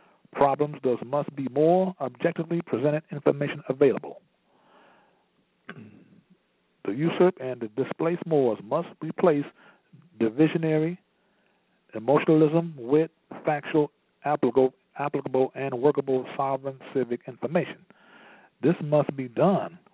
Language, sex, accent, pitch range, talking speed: English, male, American, 130-170 Hz, 95 wpm